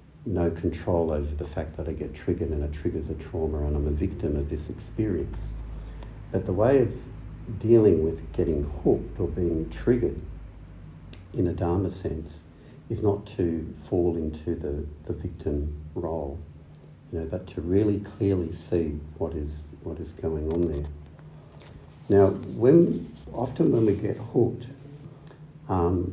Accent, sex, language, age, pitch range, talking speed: Australian, male, English, 60-79, 80-100 Hz, 155 wpm